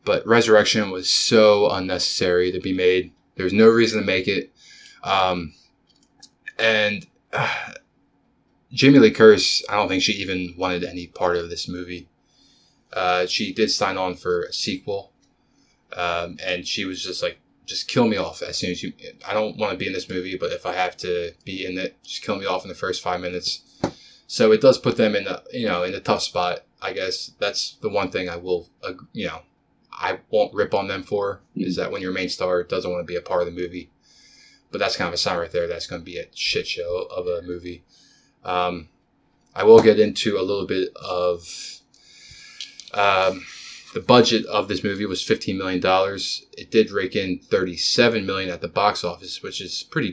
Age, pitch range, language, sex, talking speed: 20-39, 90-120 Hz, English, male, 210 wpm